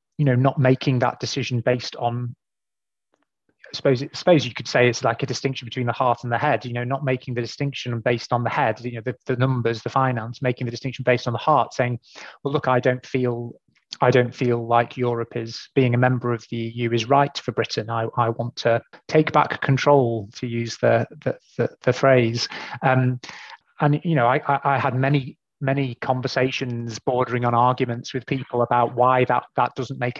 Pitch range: 120-135 Hz